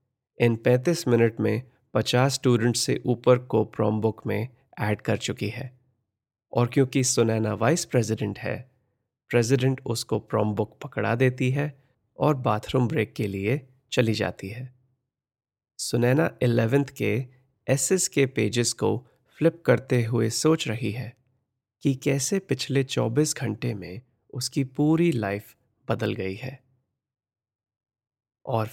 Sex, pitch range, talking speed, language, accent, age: male, 110-130 Hz, 125 wpm, Hindi, native, 30-49